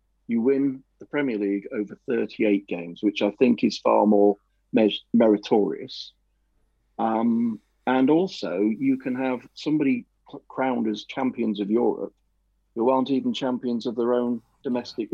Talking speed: 140 wpm